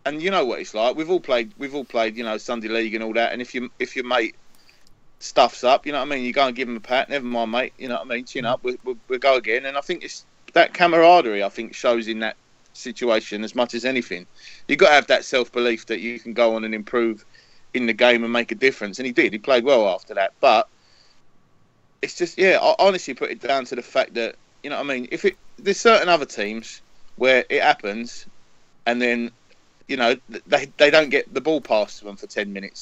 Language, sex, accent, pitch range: English, male, British, 115-160 Hz